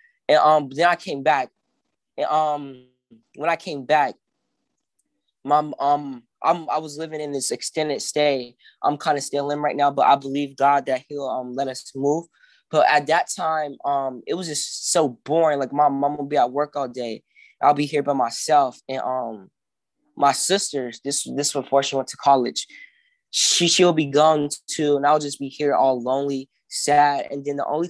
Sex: male